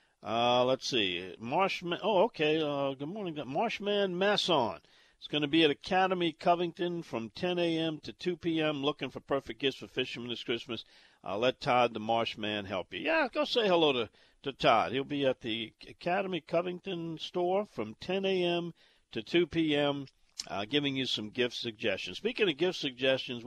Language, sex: English, male